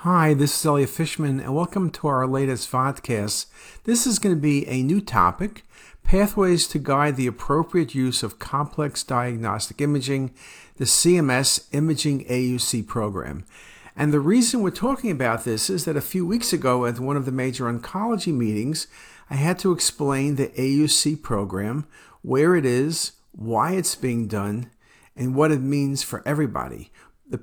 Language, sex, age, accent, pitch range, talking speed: English, male, 50-69, American, 125-170 Hz, 160 wpm